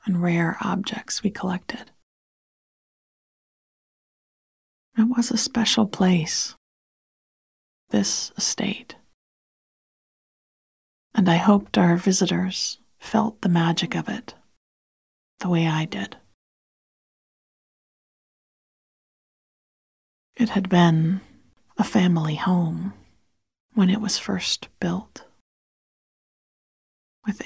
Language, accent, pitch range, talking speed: English, American, 170-205 Hz, 85 wpm